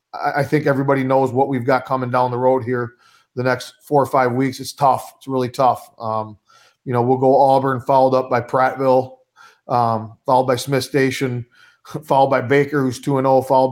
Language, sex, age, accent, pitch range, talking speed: English, male, 40-59, American, 125-145 Hz, 200 wpm